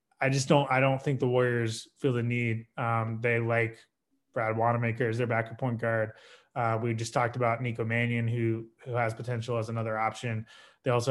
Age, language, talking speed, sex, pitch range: 20-39, English, 200 wpm, male, 115-145 Hz